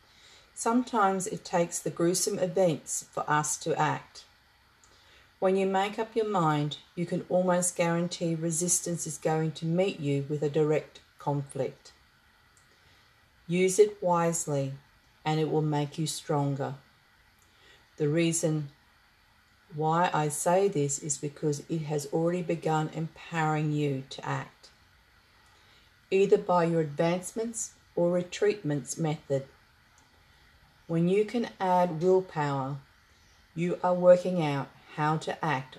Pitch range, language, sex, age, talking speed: 145-180 Hz, English, female, 40-59, 125 wpm